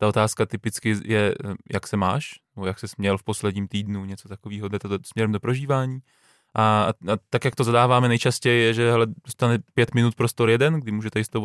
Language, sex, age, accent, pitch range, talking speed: Czech, male, 20-39, native, 105-130 Hz, 205 wpm